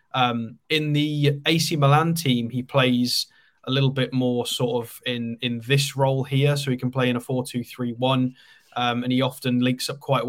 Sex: male